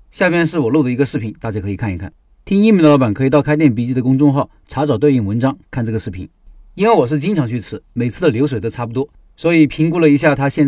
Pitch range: 120-155 Hz